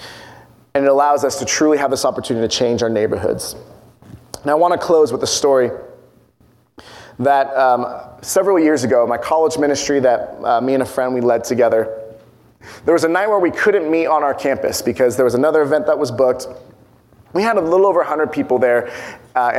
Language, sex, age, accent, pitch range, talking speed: English, male, 30-49, American, 125-155 Hz, 200 wpm